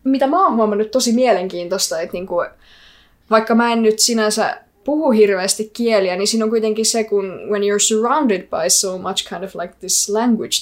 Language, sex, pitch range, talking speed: Finnish, female, 195-240 Hz, 185 wpm